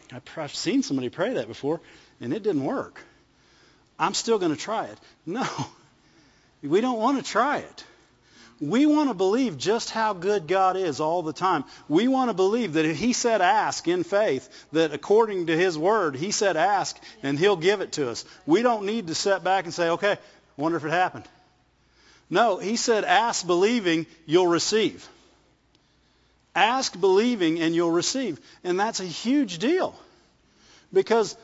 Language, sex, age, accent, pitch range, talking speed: English, male, 50-69, American, 165-235 Hz, 175 wpm